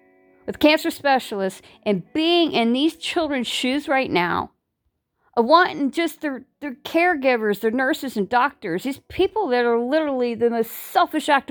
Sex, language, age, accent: female, English, 50-69, American